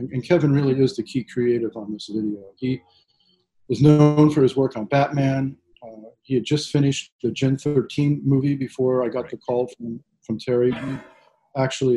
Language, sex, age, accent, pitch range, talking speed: English, male, 40-59, American, 115-135 Hz, 185 wpm